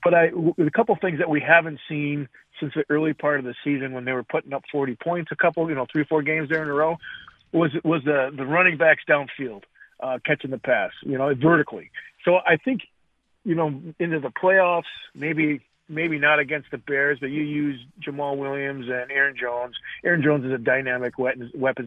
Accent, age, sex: American, 40-59, male